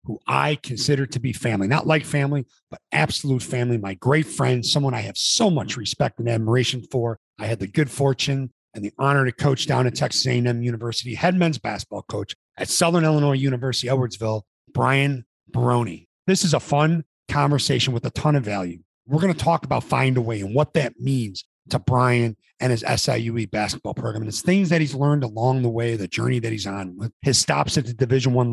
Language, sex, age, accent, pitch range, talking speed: English, male, 40-59, American, 120-155 Hz, 210 wpm